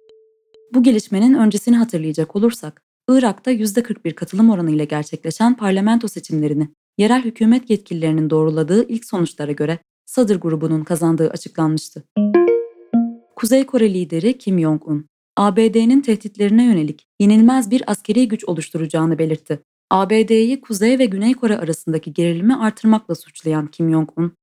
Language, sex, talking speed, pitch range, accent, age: Turkish, female, 120 wpm, 160-235 Hz, native, 20-39